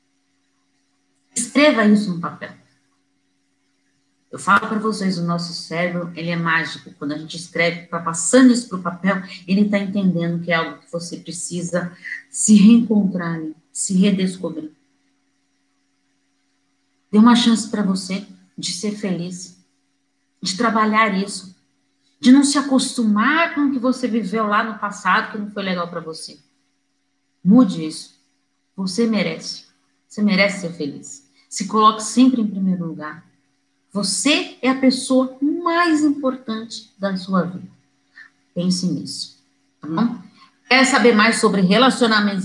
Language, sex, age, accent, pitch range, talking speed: Portuguese, female, 40-59, Brazilian, 165-240 Hz, 135 wpm